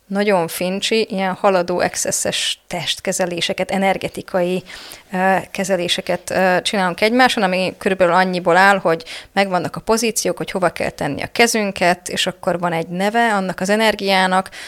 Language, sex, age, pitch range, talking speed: Hungarian, female, 20-39, 185-215 Hz, 130 wpm